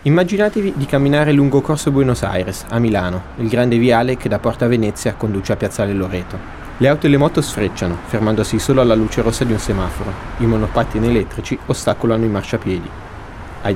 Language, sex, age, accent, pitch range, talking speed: Italian, male, 30-49, native, 105-135 Hz, 180 wpm